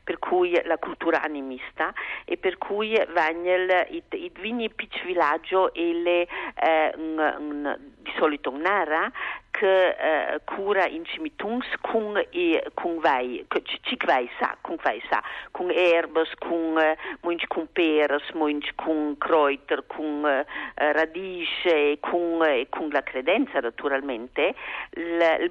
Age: 50-69